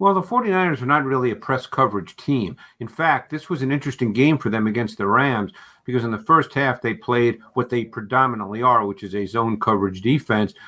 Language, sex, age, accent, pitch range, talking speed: English, male, 50-69, American, 115-135 Hz, 220 wpm